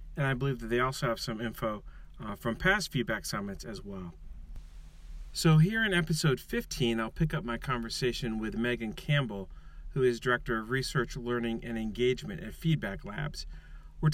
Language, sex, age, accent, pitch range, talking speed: English, male, 40-59, American, 115-150 Hz, 175 wpm